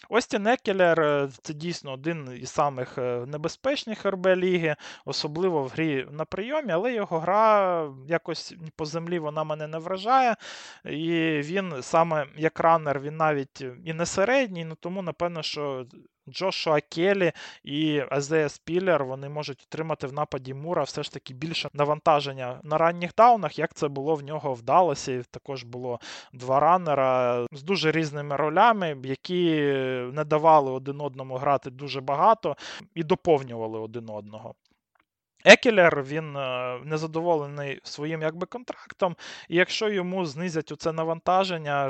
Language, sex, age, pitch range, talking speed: Ukrainian, male, 20-39, 140-170 Hz, 135 wpm